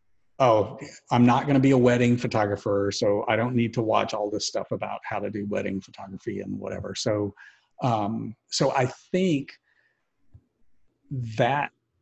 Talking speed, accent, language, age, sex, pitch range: 155 wpm, American, English, 50-69, male, 115-135 Hz